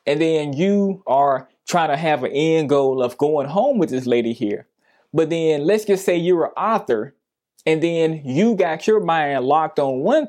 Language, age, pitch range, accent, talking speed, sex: English, 20-39, 150-215 Hz, American, 200 wpm, male